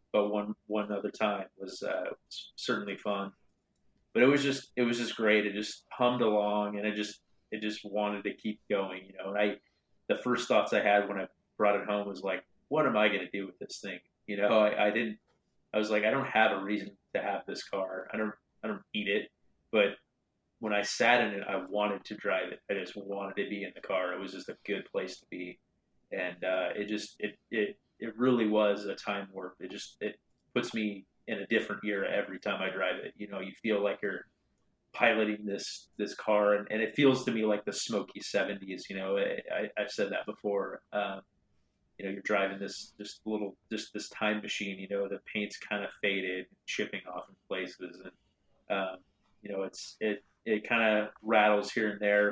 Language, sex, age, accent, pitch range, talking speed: English, male, 30-49, American, 100-105 Hz, 225 wpm